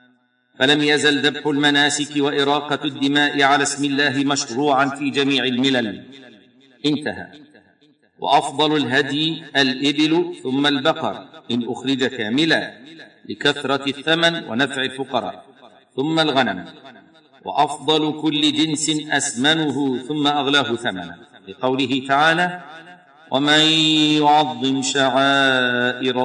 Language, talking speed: Arabic, 90 wpm